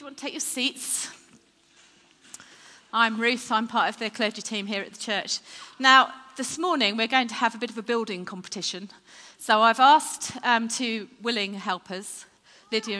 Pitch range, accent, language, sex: 210-300 Hz, British, English, female